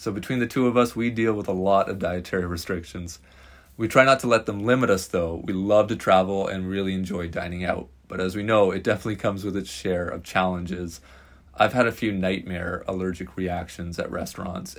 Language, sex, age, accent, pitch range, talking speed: English, male, 30-49, American, 90-110 Hz, 215 wpm